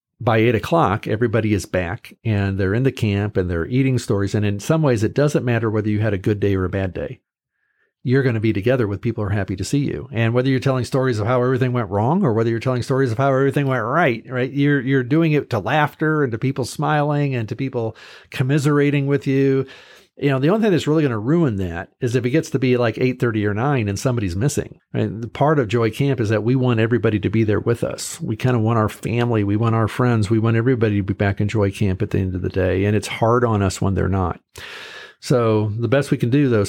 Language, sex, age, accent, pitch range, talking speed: English, male, 50-69, American, 105-130 Hz, 265 wpm